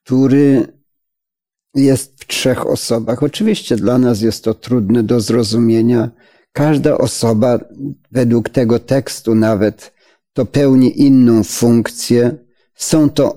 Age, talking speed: 50-69, 110 wpm